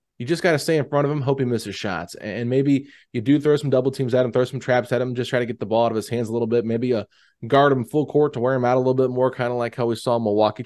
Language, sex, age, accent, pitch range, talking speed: English, male, 20-39, American, 110-135 Hz, 350 wpm